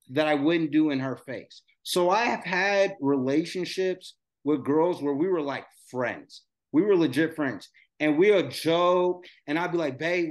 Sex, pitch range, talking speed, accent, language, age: male, 155-190 Hz, 180 wpm, American, English, 30-49